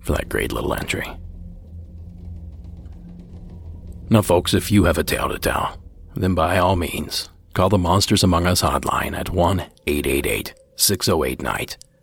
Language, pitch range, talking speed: English, 85-105 Hz, 135 wpm